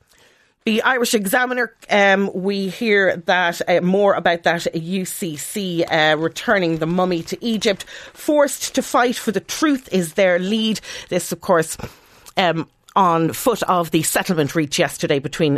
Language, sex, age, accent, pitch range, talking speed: English, female, 40-59, Irish, 140-180 Hz, 150 wpm